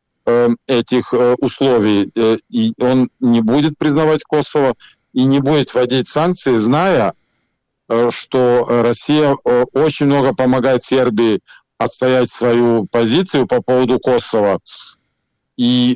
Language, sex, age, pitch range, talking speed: Russian, male, 50-69, 120-140 Hz, 100 wpm